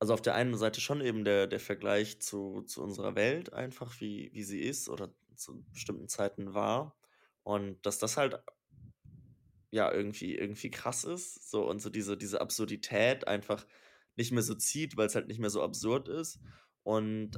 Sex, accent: male, German